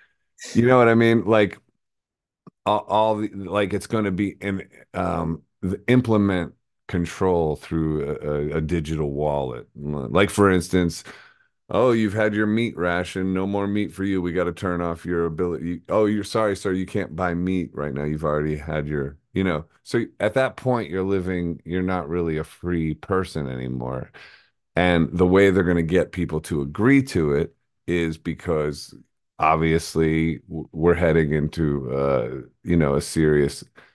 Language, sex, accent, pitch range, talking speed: English, male, American, 75-95 Hz, 170 wpm